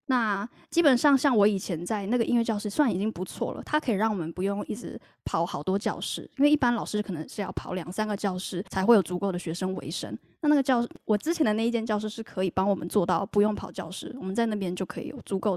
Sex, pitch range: female, 190-245 Hz